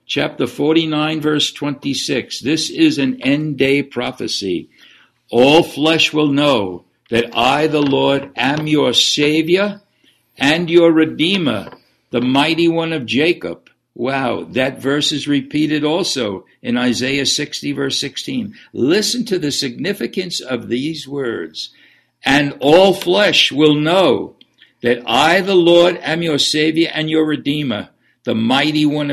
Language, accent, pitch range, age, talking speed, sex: English, American, 125-160 Hz, 60-79, 130 wpm, male